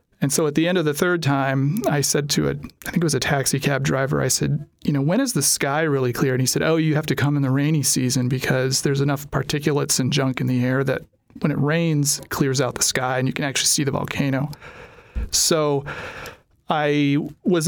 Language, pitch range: English, 140-160 Hz